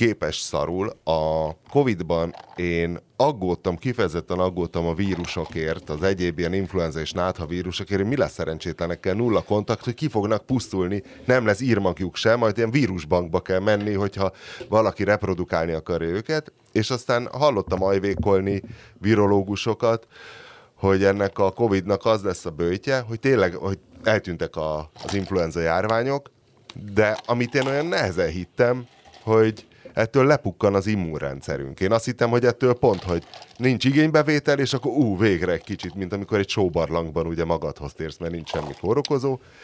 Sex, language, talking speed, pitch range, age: male, Hungarian, 145 wpm, 90-120 Hz, 30-49